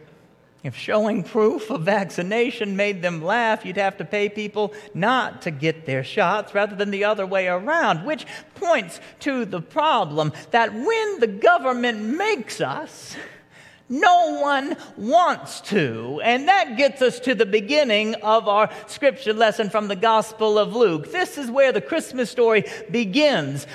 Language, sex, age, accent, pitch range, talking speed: English, male, 50-69, American, 215-290 Hz, 155 wpm